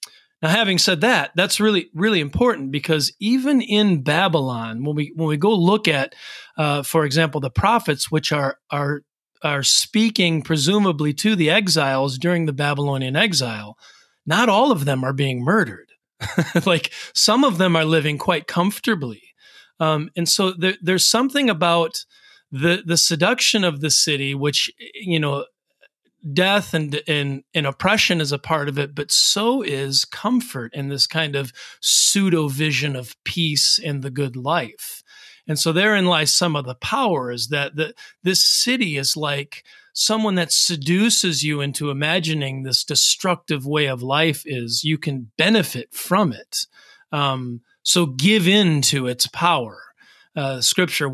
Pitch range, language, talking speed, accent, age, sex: 140-185 Hz, English, 160 wpm, American, 40-59, male